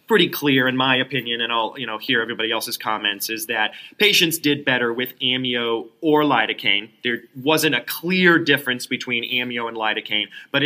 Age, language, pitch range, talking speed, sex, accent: 30-49, English, 115-155 Hz, 180 wpm, male, American